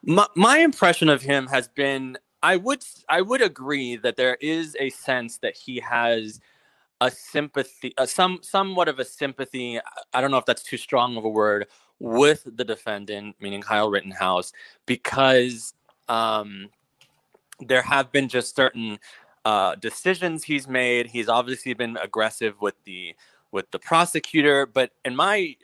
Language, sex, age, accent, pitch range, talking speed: English, male, 20-39, American, 115-150 Hz, 155 wpm